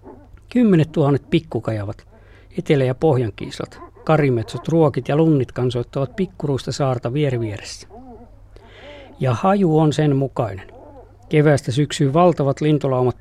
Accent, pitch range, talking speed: native, 120-155 Hz, 110 wpm